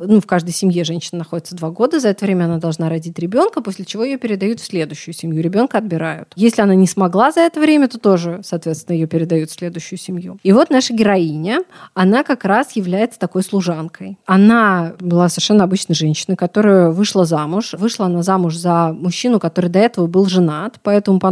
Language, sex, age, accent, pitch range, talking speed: Russian, female, 20-39, native, 175-215 Hz, 195 wpm